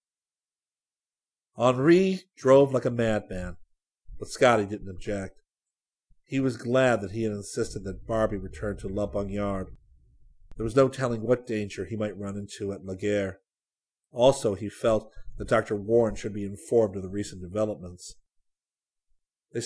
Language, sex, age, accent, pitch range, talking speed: English, male, 50-69, American, 100-120 Hz, 145 wpm